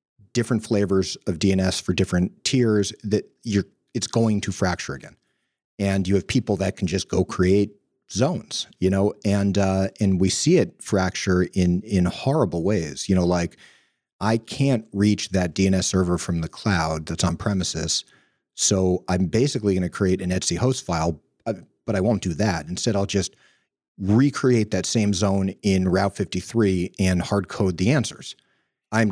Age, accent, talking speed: 40-59, American, 170 wpm